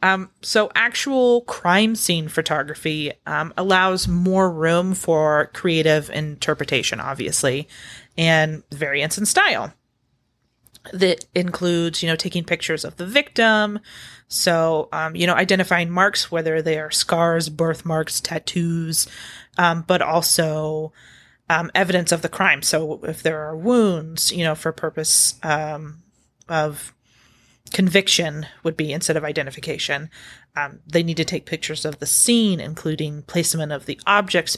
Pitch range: 155-185 Hz